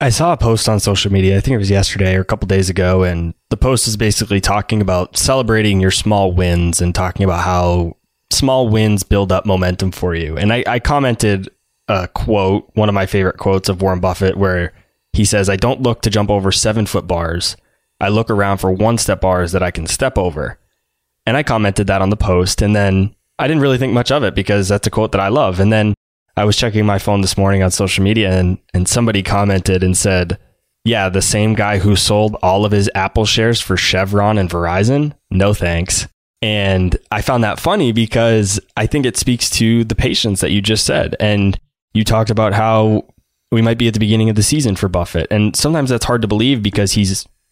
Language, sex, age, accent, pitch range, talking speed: English, male, 20-39, American, 95-110 Hz, 220 wpm